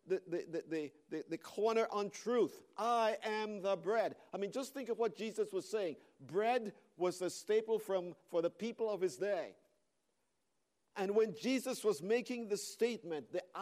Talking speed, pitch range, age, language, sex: 175 wpm, 165-230 Hz, 50-69, English, male